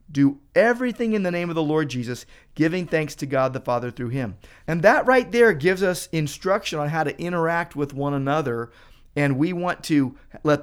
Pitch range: 130-170 Hz